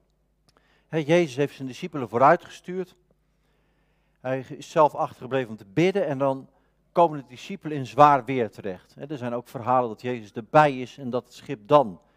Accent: Dutch